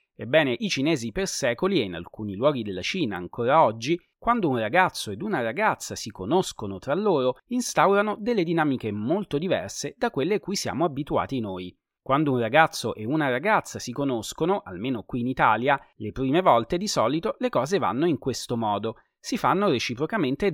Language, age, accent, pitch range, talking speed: Italian, 30-49, native, 120-195 Hz, 180 wpm